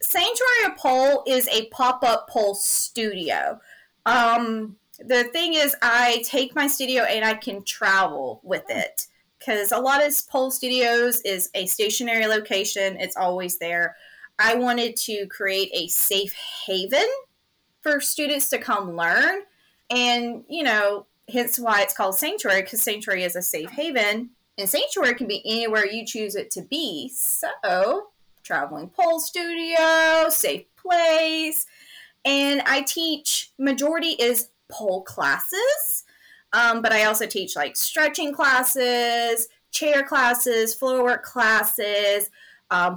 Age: 30-49